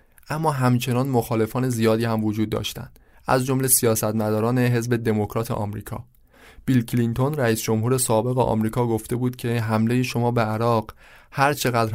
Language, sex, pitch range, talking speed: Persian, male, 110-125 Hz, 135 wpm